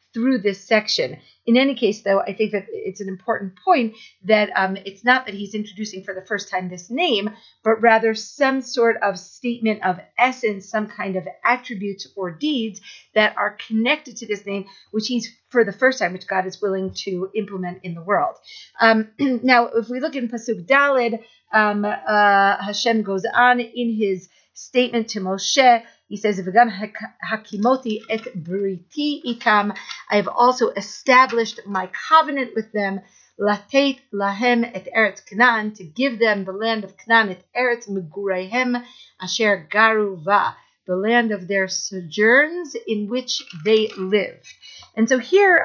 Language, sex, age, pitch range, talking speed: English, female, 50-69, 200-245 Hz, 165 wpm